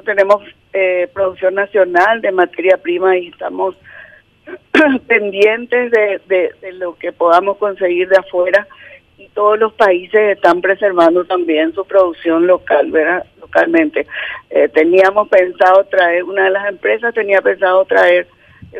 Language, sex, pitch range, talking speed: Spanish, female, 180-210 Hz, 135 wpm